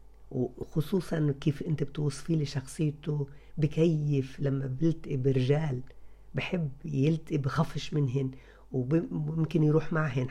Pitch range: 135-155 Hz